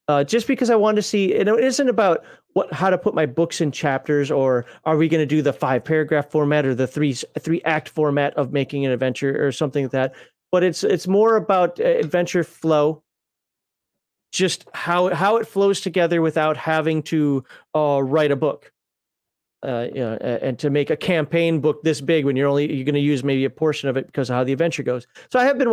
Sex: male